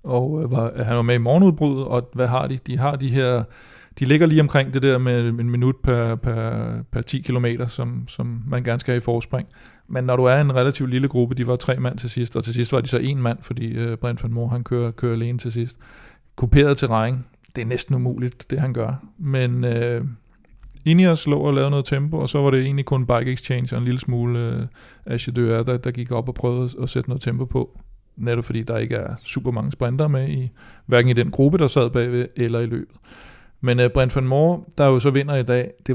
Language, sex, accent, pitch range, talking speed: Danish, male, native, 120-135 Hz, 245 wpm